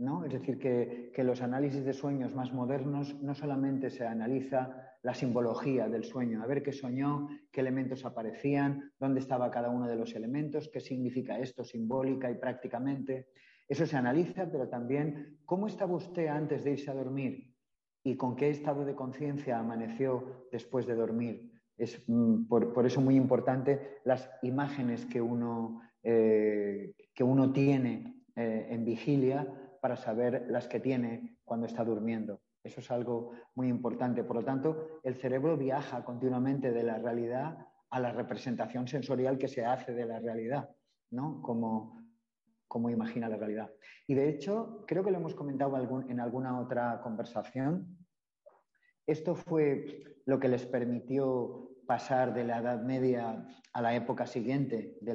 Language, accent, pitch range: Spanish, Spanish, 120-140 Hz